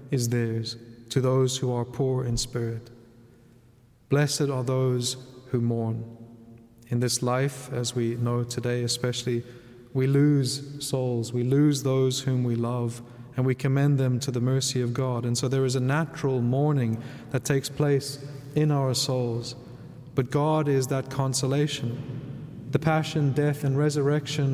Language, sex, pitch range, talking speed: English, male, 125-145 Hz, 155 wpm